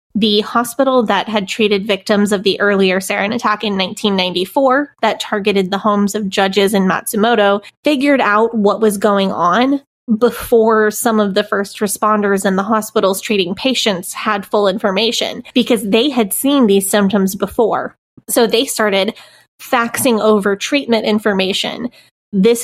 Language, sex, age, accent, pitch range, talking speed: English, female, 20-39, American, 200-230 Hz, 150 wpm